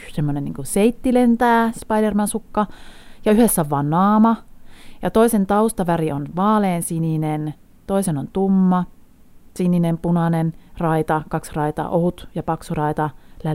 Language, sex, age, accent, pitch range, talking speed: Finnish, female, 30-49, native, 150-210 Hz, 110 wpm